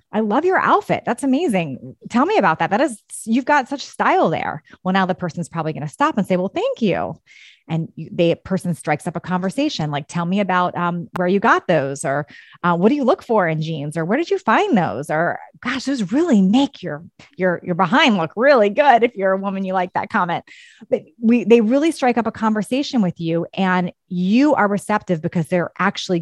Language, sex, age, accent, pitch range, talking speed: English, female, 30-49, American, 175-230 Hz, 225 wpm